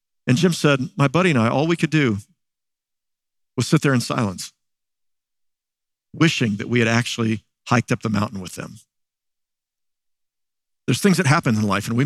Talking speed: 175 wpm